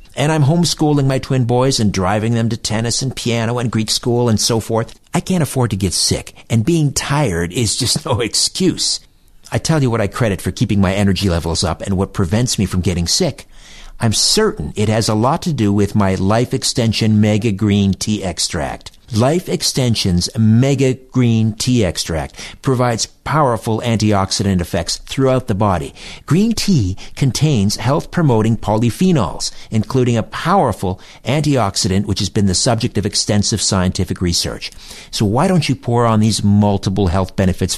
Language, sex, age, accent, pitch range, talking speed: English, male, 50-69, American, 100-130 Hz, 170 wpm